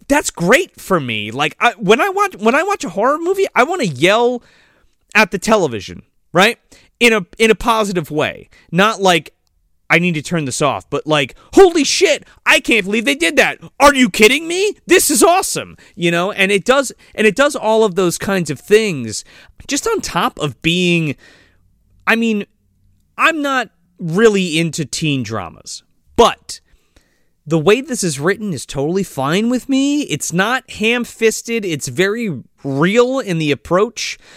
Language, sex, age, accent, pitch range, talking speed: English, male, 30-49, American, 150-225 Hz, 175 wpm